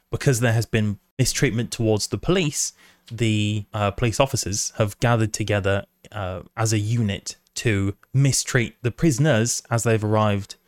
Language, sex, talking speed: English, male, 145 wpm